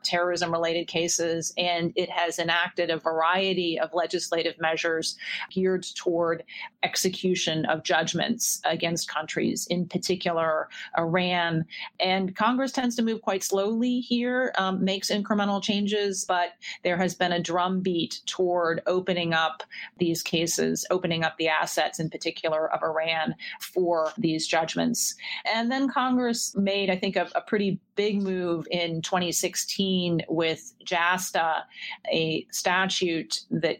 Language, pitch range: English, 165-190 Hz